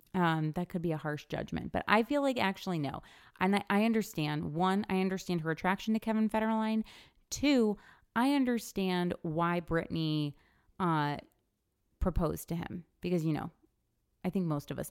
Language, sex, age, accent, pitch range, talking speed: English, female, 30-49, American, 155-190 Hz, 165 wpm